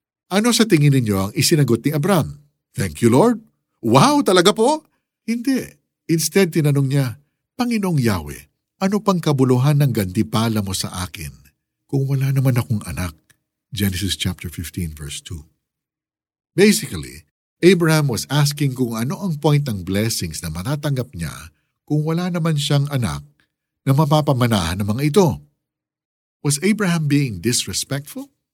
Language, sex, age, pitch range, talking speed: Filipino, male, 50-69, 110-160 Hz, 140 wpm